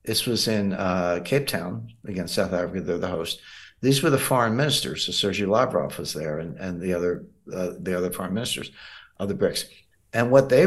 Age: 60-79